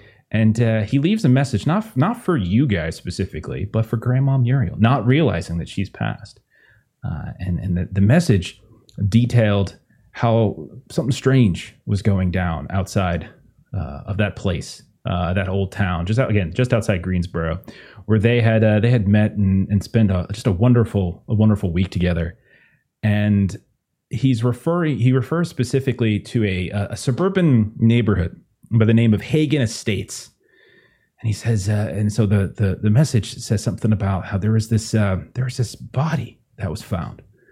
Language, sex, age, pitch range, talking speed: English, male, 30-49, 100-125 Hz, 175 wpm